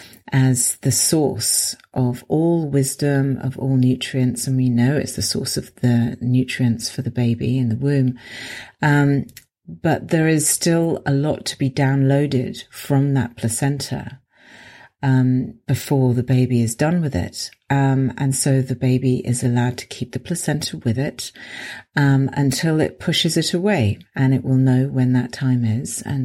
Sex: female